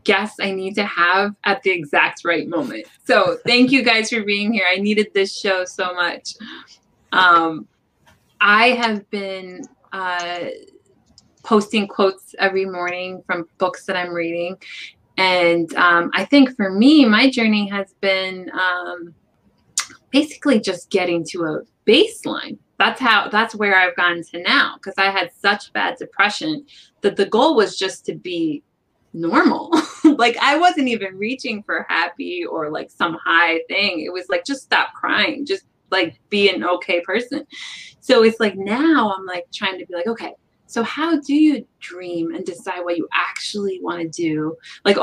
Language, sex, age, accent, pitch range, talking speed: English, female, 20-39, American, 180-245 Hz, 165 wpm